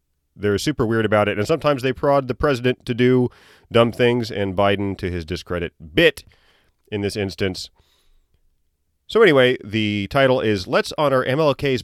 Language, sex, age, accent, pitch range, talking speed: English, male, 30-49, American, 80-125 Hz, 160 wpm